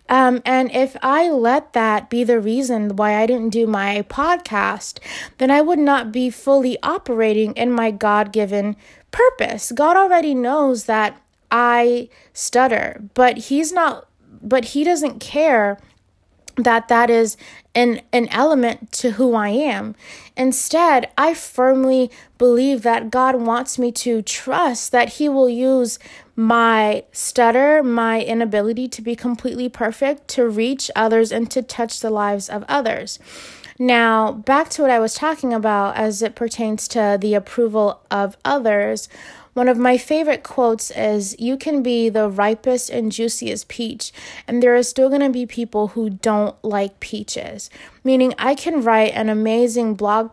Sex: female